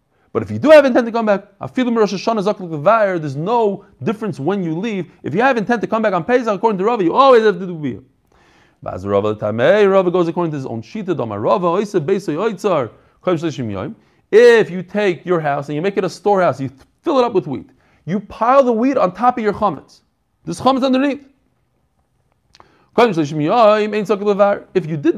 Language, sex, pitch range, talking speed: English, male, 155-215 Hz, 155 wpm